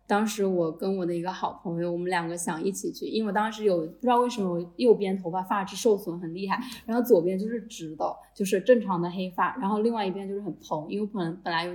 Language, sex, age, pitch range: Chinese, female, 10-29, 175-205 Hz